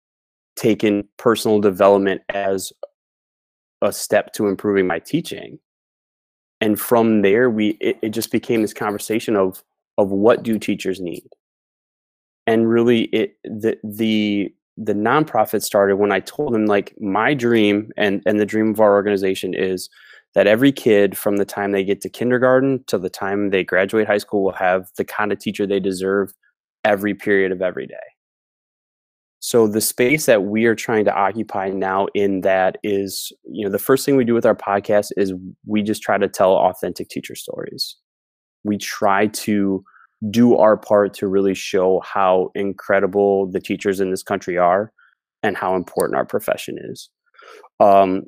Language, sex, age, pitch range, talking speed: English, male, 20-39, 95-110 Hz, 170 wpm